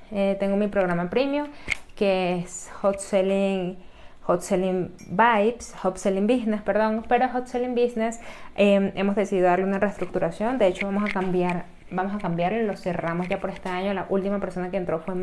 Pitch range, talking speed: 180-205 Hz, 185 wpm